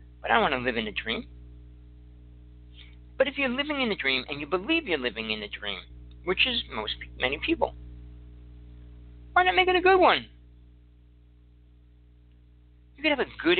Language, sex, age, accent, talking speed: English, male, 50-69, American, 180 wpm